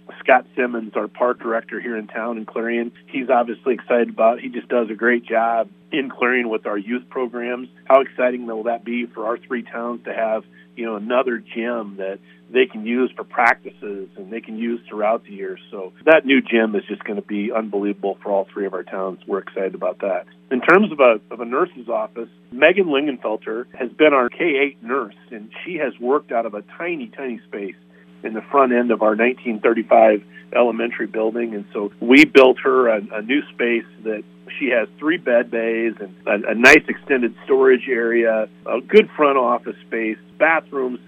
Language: English